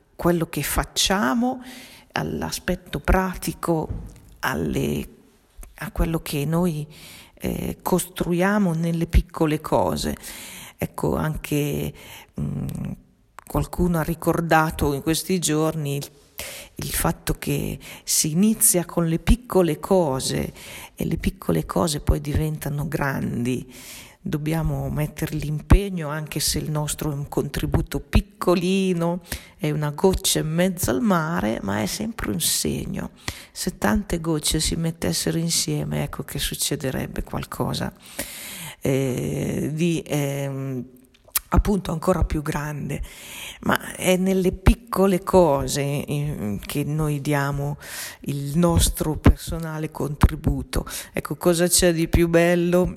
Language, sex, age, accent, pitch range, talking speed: Italian, female, 40-59, native, 145-175 Hz, 110 wpm